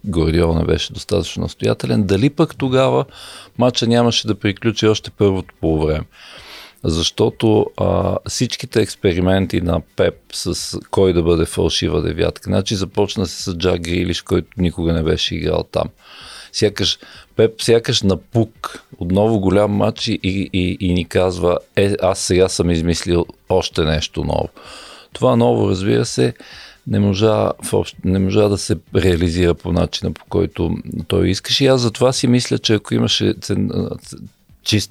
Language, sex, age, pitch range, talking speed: Bulgarian, male, 50-69, 85-110 Hz, 150 wpm